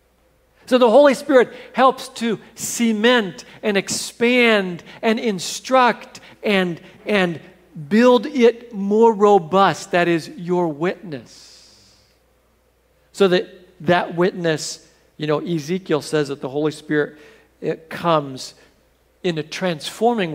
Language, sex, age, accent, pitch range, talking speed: English, male, 50-69, American, 160-215 Hz, 110 wpm